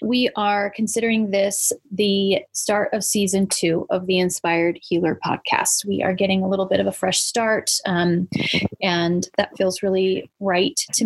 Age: 30-49